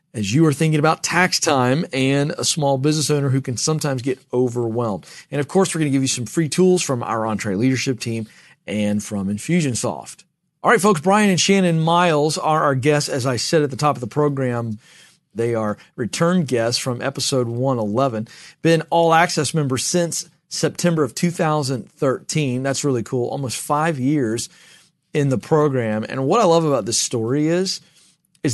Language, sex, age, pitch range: English, male, 40-59, 130-165 Hz